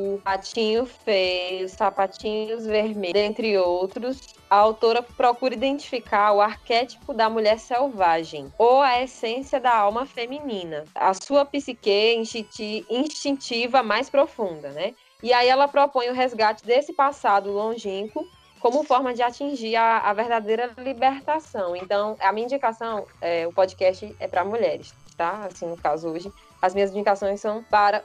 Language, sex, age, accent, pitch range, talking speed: Portuguese, female, 20-39, Brazilian, 200-255 Hz, 140 wpm